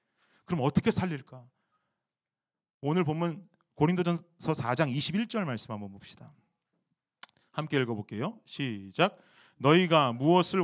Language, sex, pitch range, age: Korean, male, 135-220 Hz, 30-49